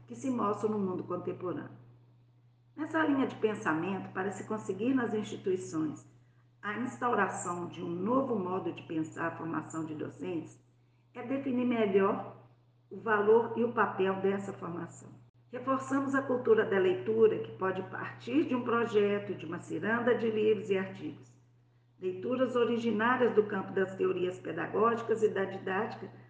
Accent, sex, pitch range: Brazilian, female, 155-230 Hz